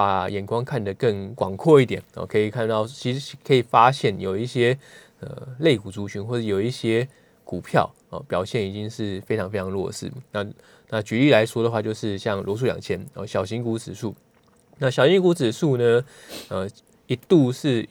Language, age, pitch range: Chinese, 20-39, 105-130 Hz